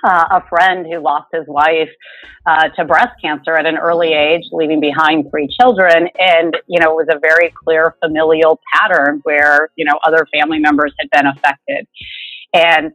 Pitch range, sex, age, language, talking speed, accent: 155-190 Hz, female, 40-59, English, 180 wpm, American